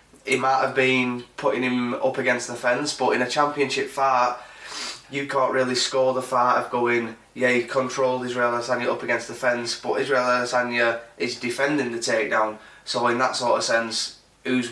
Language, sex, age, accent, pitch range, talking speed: English, male, 20-39, British, 115-130 Hz, 190 wpm